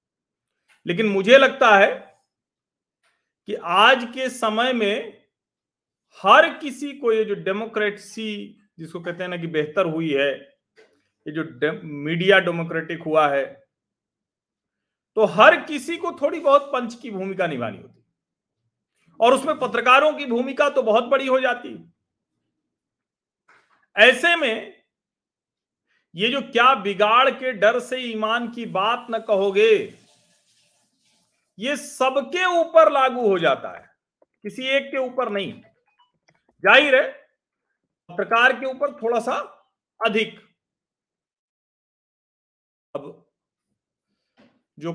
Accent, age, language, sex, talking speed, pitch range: native, 40-59, Hindi, male, 115 wpm, 195-265 Hz